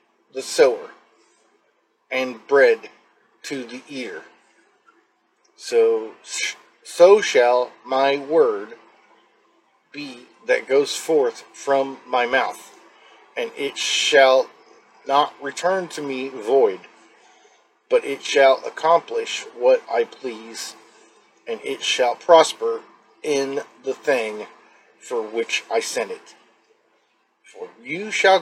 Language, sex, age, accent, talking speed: English, male, 40-59, American, 100 wpm